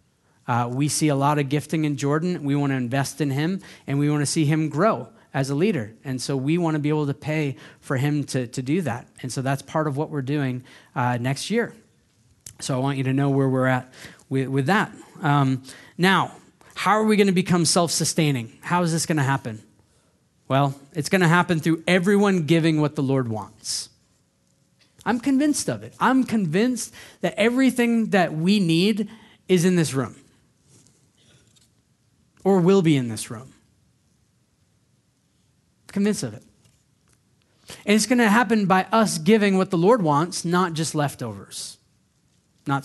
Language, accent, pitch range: English, American, 135-185 Hz